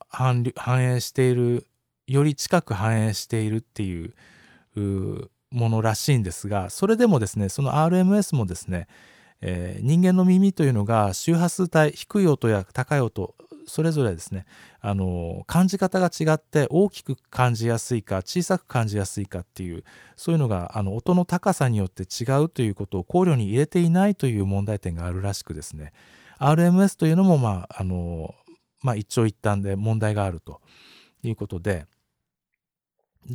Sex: male